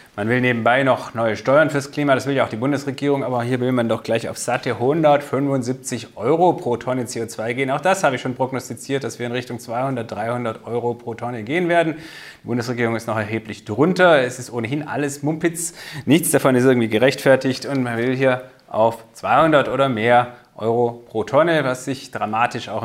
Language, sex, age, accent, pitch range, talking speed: German, male, 30-49, German, 115-140 Hz, 200 wpm